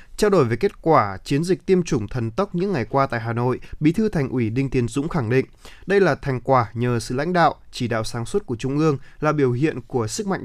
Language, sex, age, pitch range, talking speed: Vietnamese, male, 20-39, 120-155 Hz, 270 wpm